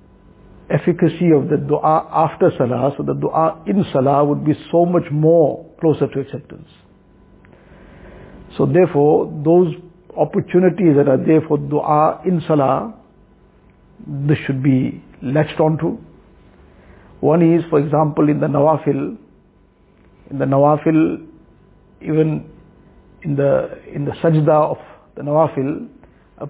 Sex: male